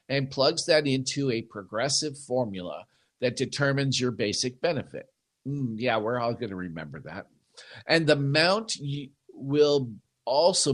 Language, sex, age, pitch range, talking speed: English, male, 50-69, 115-150 Hz, 140 wpm